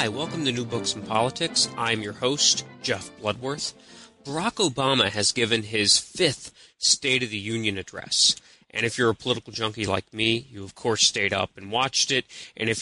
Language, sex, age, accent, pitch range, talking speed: English, male, 30-49, American, 105-135 Hz, 185 wpm